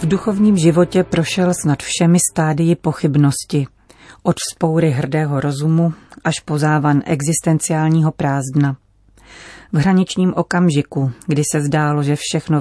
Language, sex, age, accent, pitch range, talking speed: Czech, female, 40-59, native, 140-170 Hz, 115 wpm